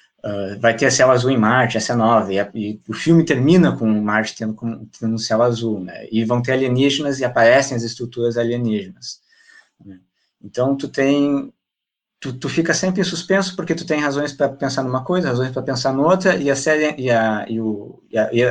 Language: Portuguese